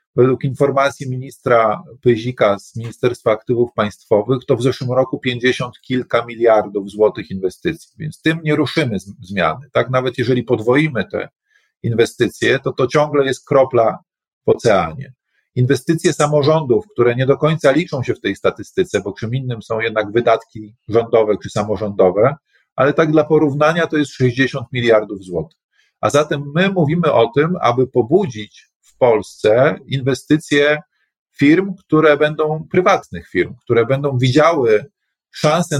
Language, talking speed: Polish, 140 wpm